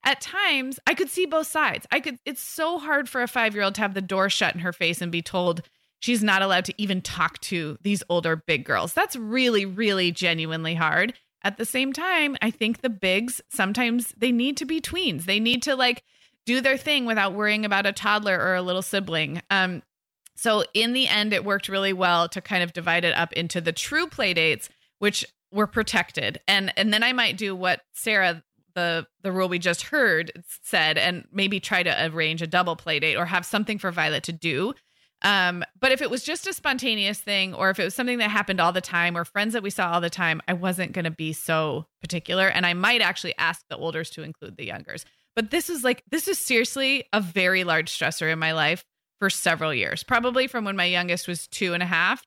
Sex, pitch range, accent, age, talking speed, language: female, 170-235 Hz, American, 20-39, 225 wpm, English